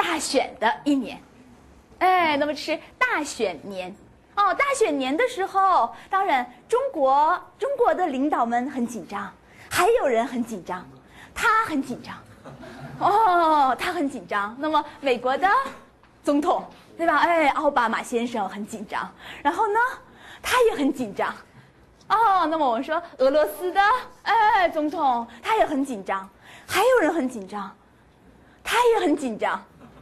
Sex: female